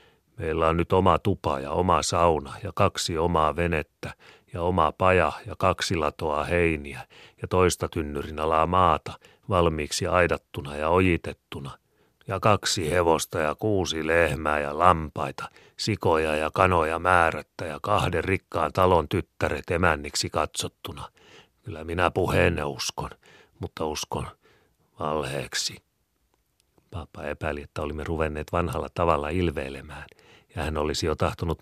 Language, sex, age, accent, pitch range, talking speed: Finnish, male, 40-59, native, 75-85 Hz, 125 wpm